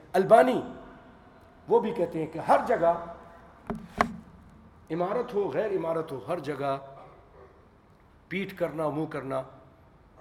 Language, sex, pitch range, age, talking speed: English, male, 130-165 Hz, 50-69, 110 wpm